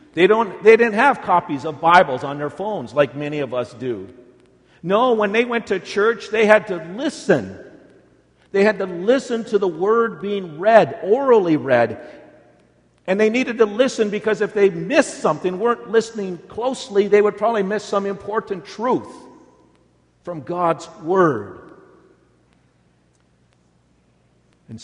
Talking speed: 145 wpm